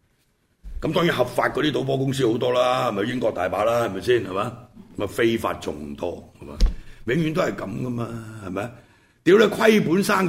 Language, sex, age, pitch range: Chinese, male, 60-79, 110-170 Hz